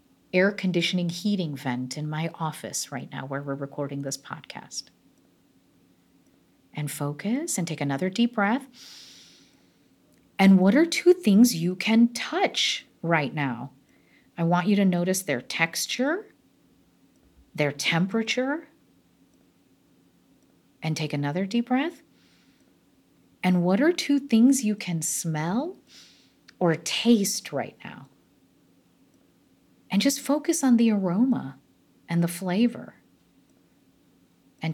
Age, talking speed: 40-59, 115 wpm